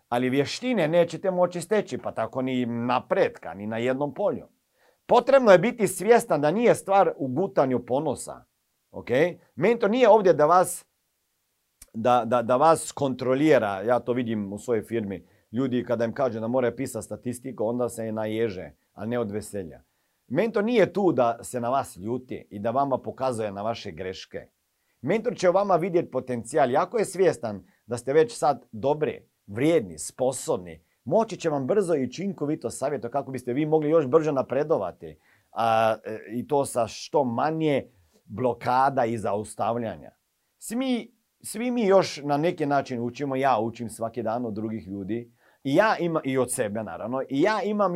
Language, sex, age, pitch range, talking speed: Croatian, male, 50-69, 115-165 Hz, 165 wpm